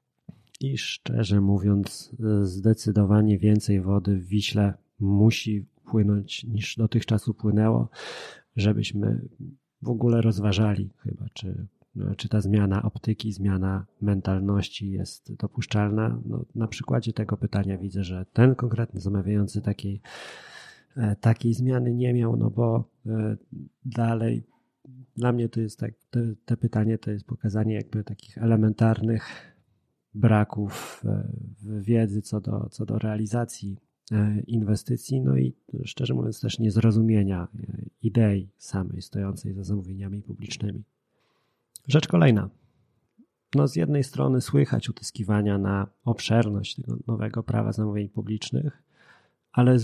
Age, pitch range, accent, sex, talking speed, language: 30-49, 100-120 Hz, native, male, 110 wpm, Polish